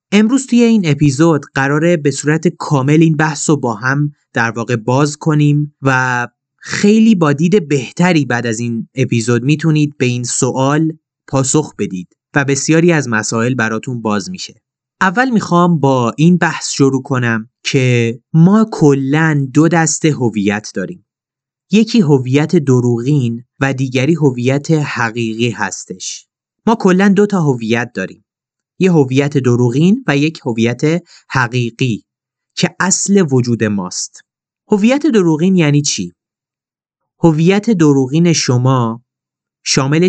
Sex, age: male, 30-49